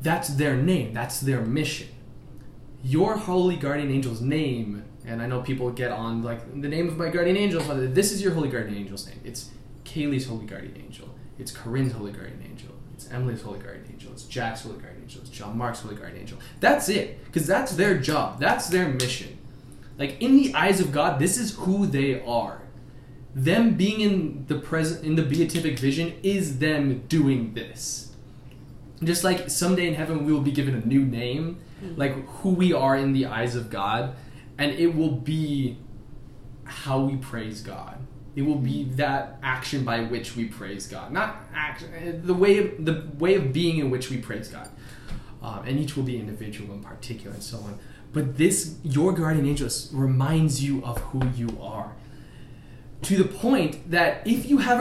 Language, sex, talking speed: English, male, 185 wpm